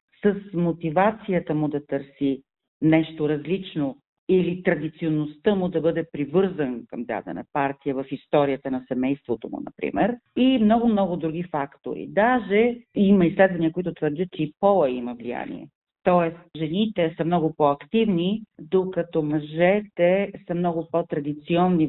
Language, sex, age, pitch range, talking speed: Bulgarian, female, 40-59, 155-195 Hz, 125 wpm